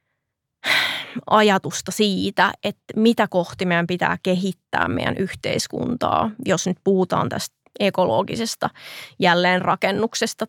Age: 20-39